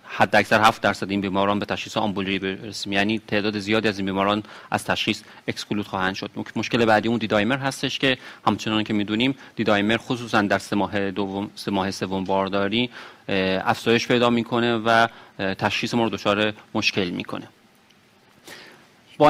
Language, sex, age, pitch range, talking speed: Persian, male, 40-59, 100-120 Hz, 150 wpm